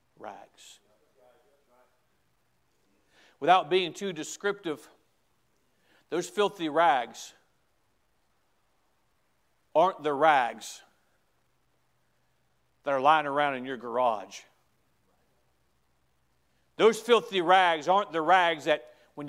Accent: American